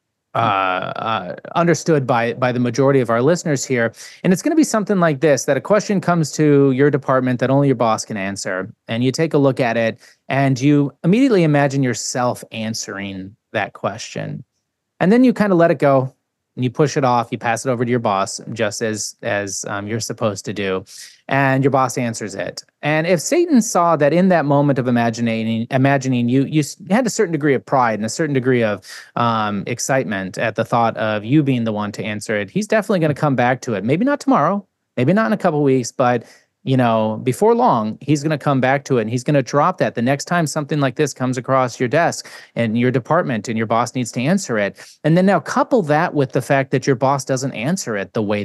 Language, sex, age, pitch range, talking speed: English, male, 20-39, 115-155 Hz, 235 wpm